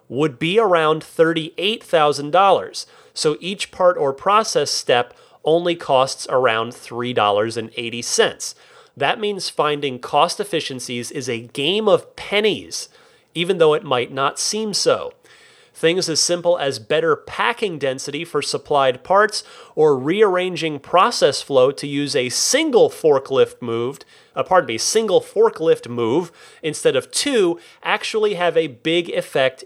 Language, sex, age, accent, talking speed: English, male, 30-49, American, 130 wpm